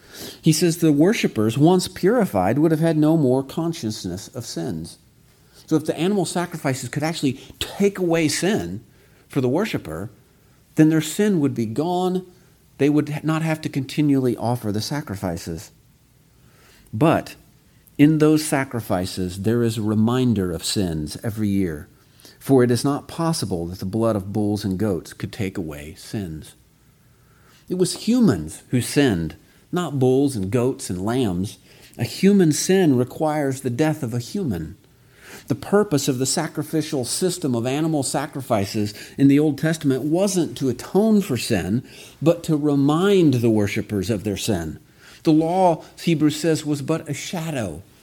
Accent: American